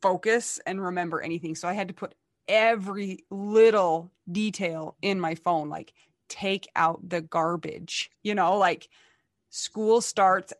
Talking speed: 140 wpm